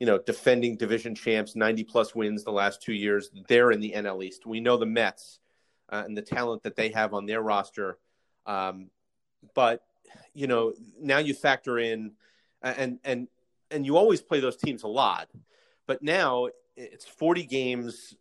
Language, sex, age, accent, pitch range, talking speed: English, male, 30-49, American, 110-130 Hz, 180 wpm